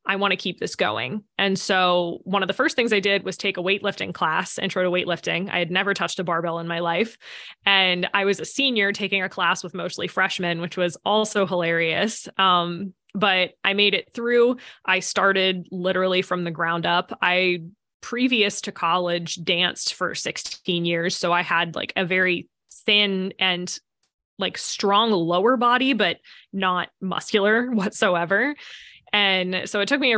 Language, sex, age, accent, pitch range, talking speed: English, female, 20-39, American, 180-205 Hz, 180 wpm